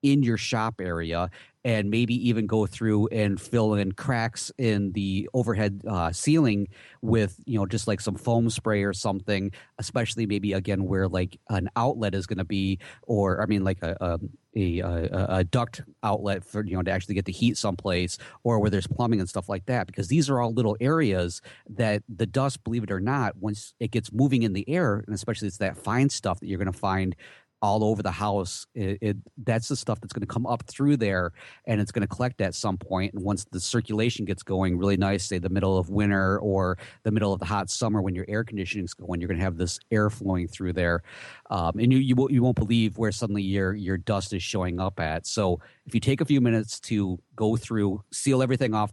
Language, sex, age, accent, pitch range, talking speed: English, male, 30-49, American, 95-115 Hz, 220 wpm